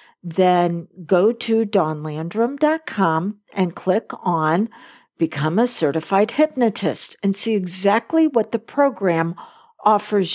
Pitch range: 175-230 Hz